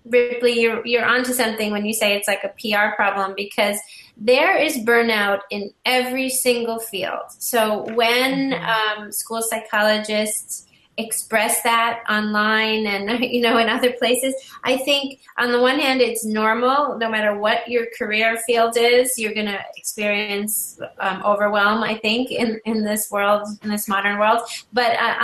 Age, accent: 30-49, American